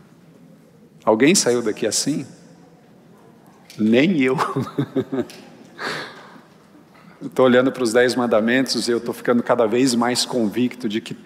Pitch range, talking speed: 115-140 Hz, 125 wpm